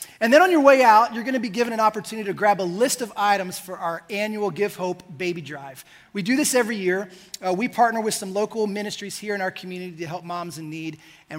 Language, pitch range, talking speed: English, 180-225 Hz, 255 wpm